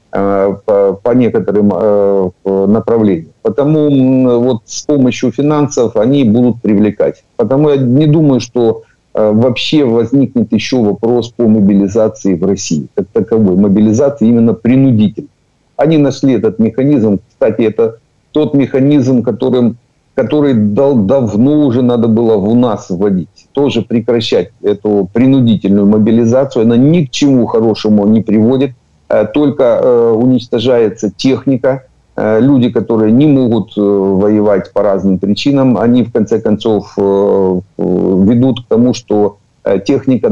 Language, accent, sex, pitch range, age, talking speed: Ukrainian, native, male, 105-130 Hz, 50-69, 115 wpm